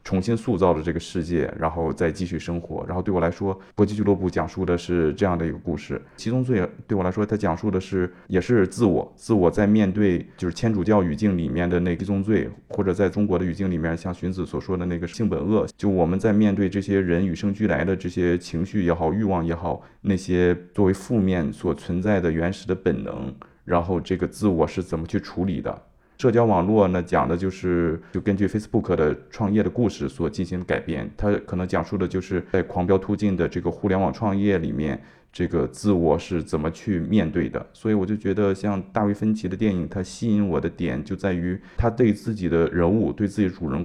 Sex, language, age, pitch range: male, Chinese, 20-39, 85-100 Hz